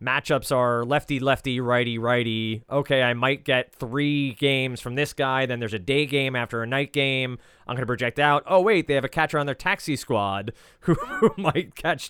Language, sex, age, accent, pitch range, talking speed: English, male, 30-49, American, 110-140 Hz, 210 wpm